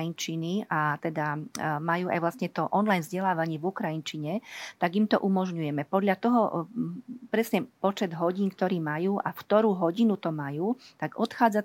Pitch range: 165-195 Hz